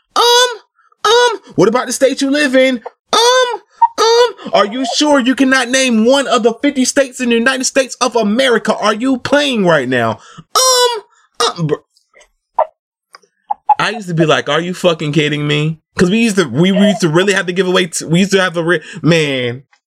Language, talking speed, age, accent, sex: English, 200 wpm, 20-39, American, male